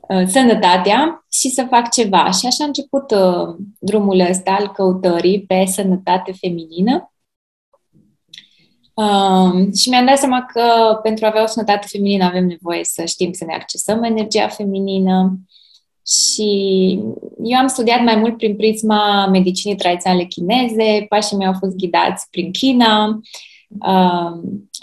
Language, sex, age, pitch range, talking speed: Romanian, female, 20-39, 185-225 Hz, 140 wpm